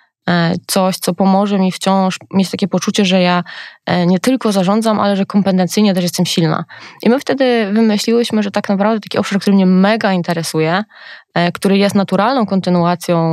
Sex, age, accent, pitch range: female, 20-39, native, 170-220 Hz